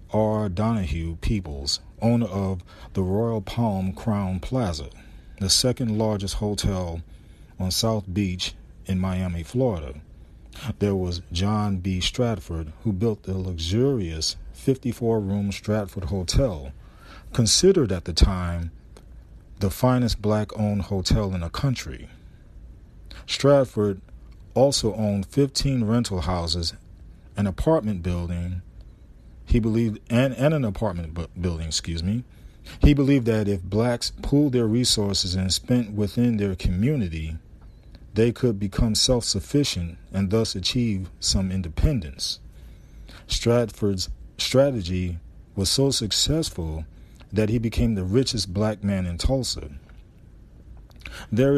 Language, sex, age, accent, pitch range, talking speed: English, male, 40-59, American, 85-115 Hz, 115 wpm